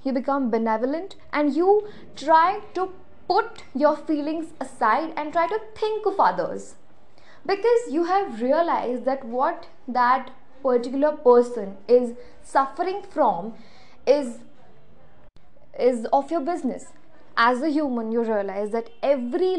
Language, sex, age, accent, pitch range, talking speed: Hindi, female, 20-39, native, 245-325 Hz, 125 wpm